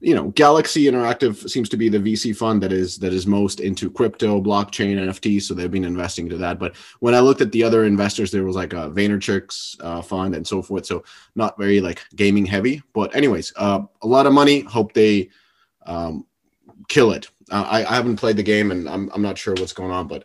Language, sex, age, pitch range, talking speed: English, male, 30-49, 95-115 Hz, 230 wpm